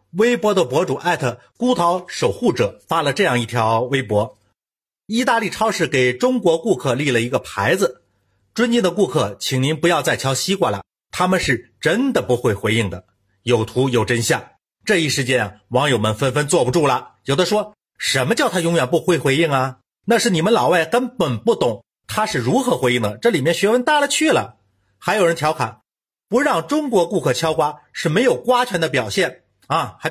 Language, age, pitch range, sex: Chinese, 50-69, 120-200 Hz, male